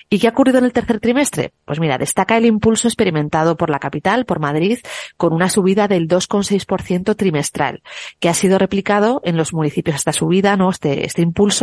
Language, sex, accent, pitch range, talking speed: Spanish, female, Spanish, 160-195 Hz, 195 wpm